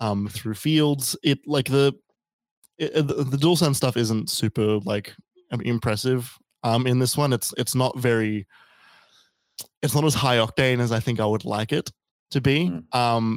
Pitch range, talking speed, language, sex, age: 110-135 Hz, 170 wpm, English, male, 20-39